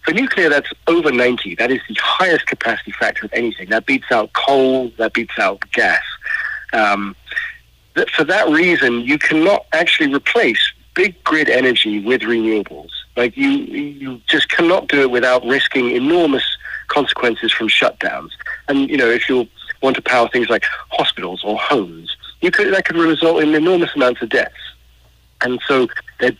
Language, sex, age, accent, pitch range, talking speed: English, male, 50-69, British, 110-160 Hz, 170 wpm